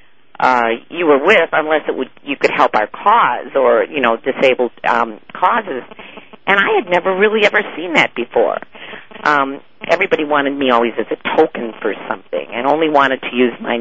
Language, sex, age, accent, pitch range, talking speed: English, female, 50-69, American, 145-215 Hz, 185 wpm